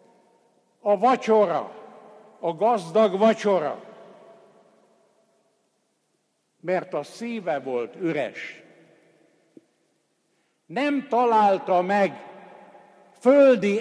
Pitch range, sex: 165-225 Hz, male